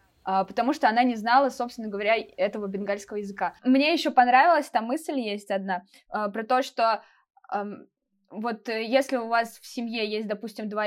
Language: Russian